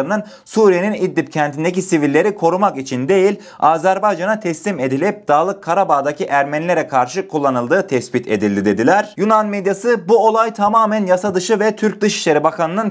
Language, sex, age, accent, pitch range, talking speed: Turkish, male, 30-49, native, 145-205 Hz, 135 wpm